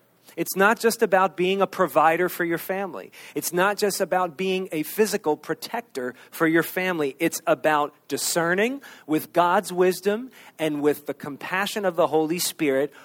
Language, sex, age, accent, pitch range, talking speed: English, male, 40-59, American, 145-185 Hz, 160 wpm